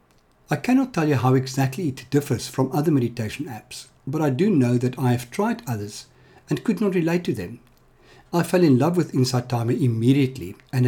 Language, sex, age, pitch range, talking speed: English, male, 60-79, 125-160 Hz, 200 wpm